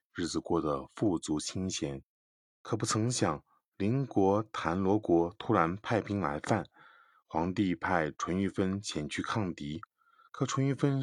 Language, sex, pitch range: Chinese, male, 90-120 Hz